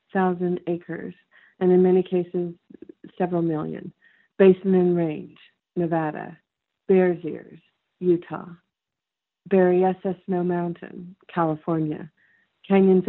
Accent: American